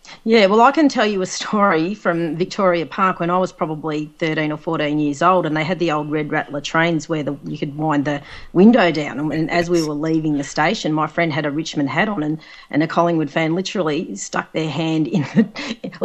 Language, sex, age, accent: English, female, 40-59, Australian